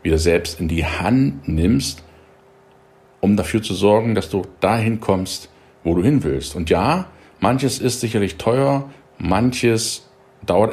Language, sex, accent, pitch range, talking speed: German, male, German, 80-120 Hz, 145 wpm